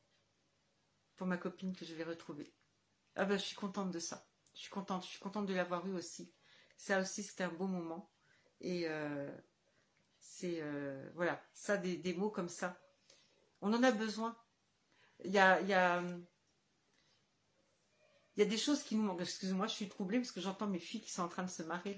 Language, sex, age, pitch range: French, female, 60-79, 175-210 Hz